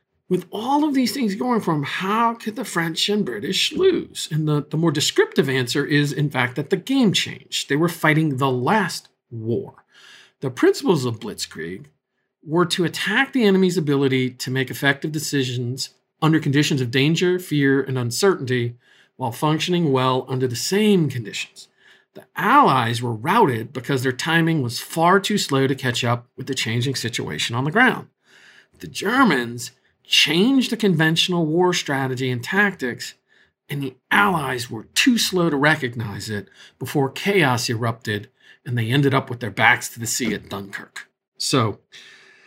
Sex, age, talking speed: male, 50-69, 165 wpm